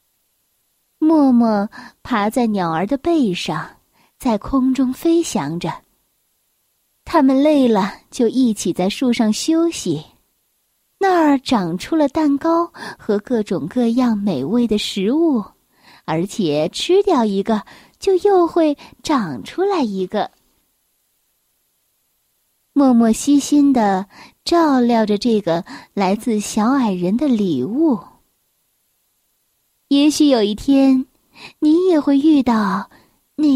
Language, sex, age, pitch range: Chinese, female, 20-39, 215-295 Hz